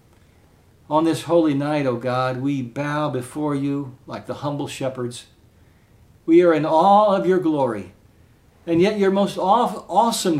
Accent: American